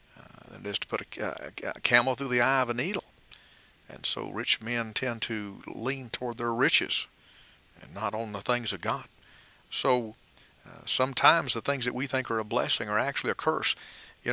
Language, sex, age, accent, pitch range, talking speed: English, male, 50-69, American, 110-140 Hz, 185 wpm